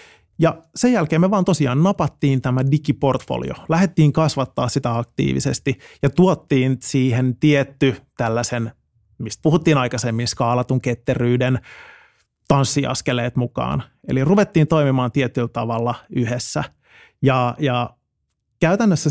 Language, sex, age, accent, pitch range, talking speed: Finnish, male, 30-49, native, 120-150 Hz, 105 wpm